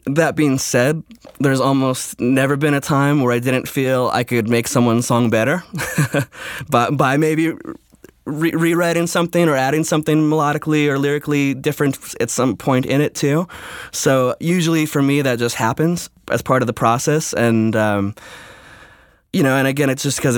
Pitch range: 115-140 Hz